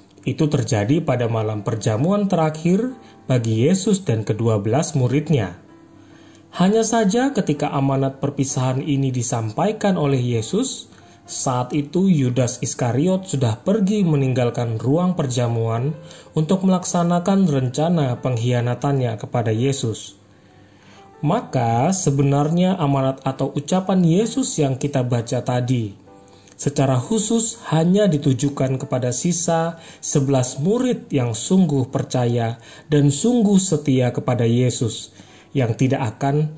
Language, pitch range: Indonesian, 120-170 Hz